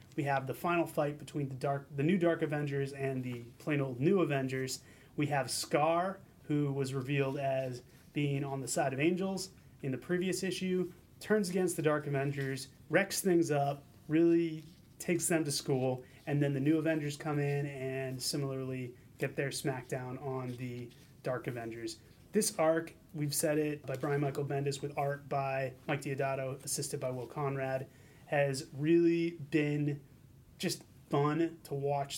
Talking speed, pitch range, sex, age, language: 165 wpm, 135-150 Hz, male, 30-49, English